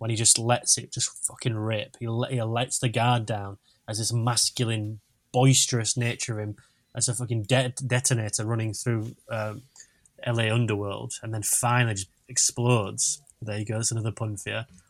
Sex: male